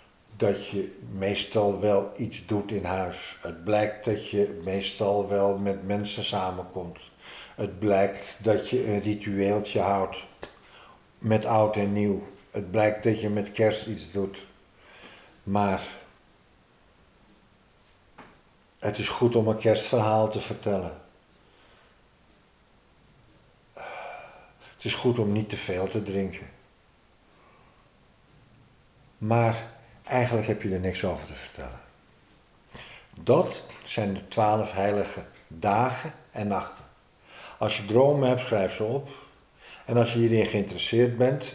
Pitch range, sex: 95-110 Hz, male